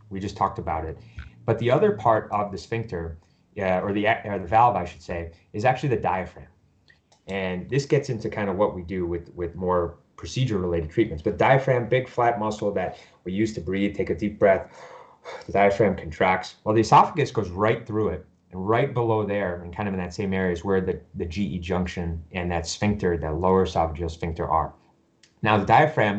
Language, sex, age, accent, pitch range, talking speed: English, male, 30-49, American, 90-115 Hz, 210 wpm